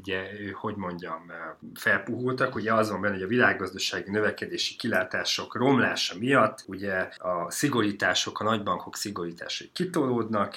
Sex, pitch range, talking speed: male, 90-110 Hz, 120 wpm